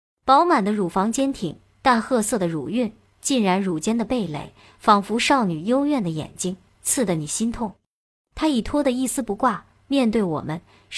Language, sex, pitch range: Chinese, male, 185-260 Hz